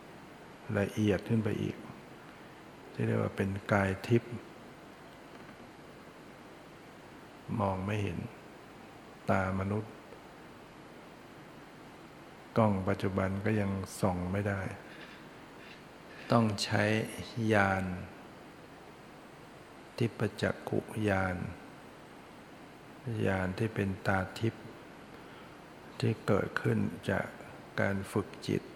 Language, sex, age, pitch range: English, male, 60-79, 95-110 Hz